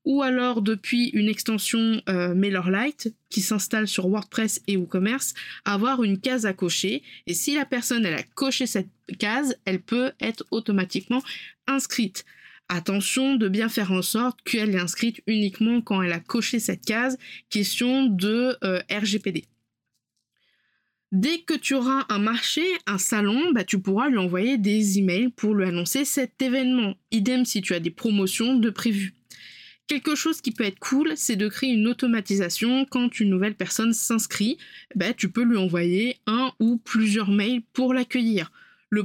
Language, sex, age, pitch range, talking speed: French, female, 20-39, 195-250 Hz, 165 wpm